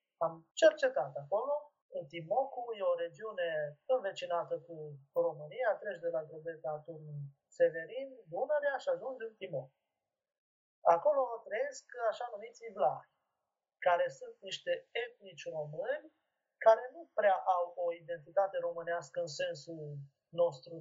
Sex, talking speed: male, 115 wpm